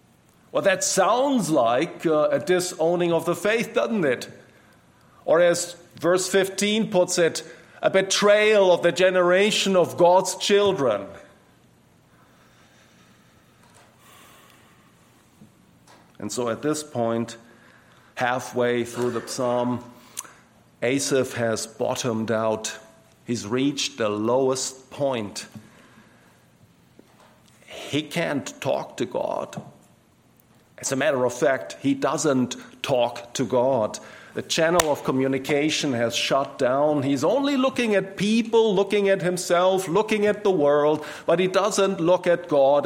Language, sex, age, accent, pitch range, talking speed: English, male, 50-69, German, 130-185 Hz, 115 wpm